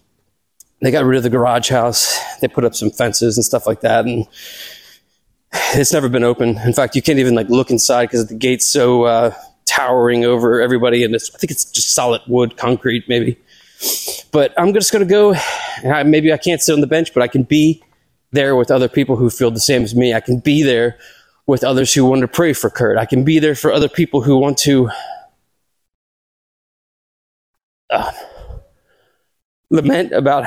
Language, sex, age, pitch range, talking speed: English, male, 20-39, 120-160 Hz, 200 wpm